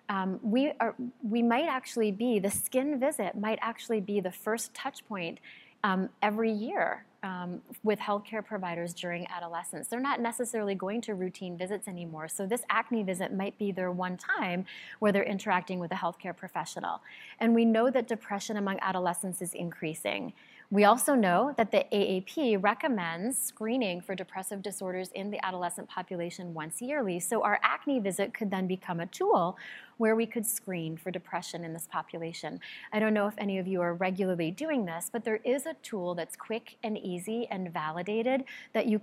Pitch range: 180-225 Hz